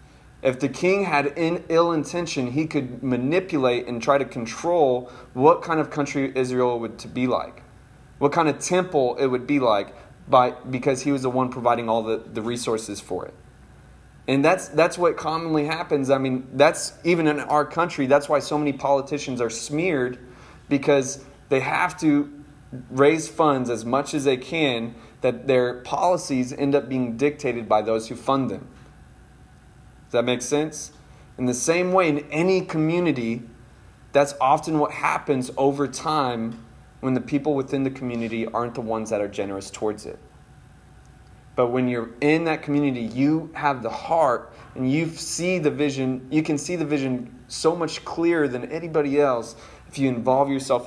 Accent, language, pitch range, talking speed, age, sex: American, English, 125-150 Hz, 175 wpm, 20-39, male